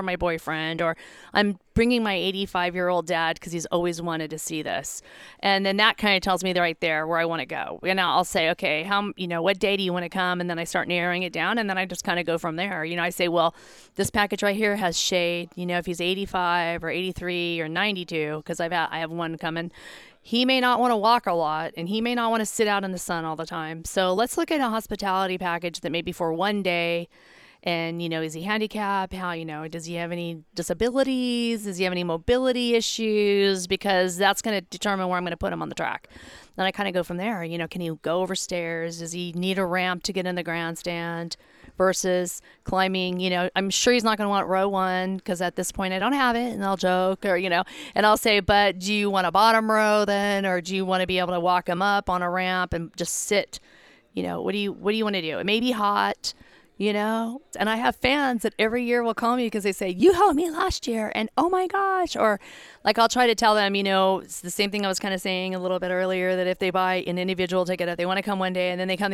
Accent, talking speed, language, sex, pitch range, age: American, 270 wpm, English, female, 175-205 Hz, 40-59